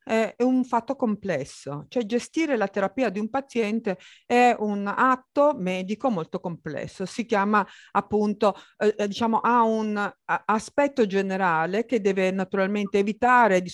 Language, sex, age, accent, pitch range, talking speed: Italian, female, 50-69, native, 180-255 Hz, 135 wpm